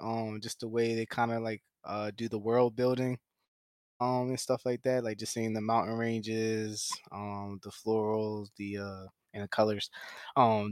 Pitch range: 110-135 Hz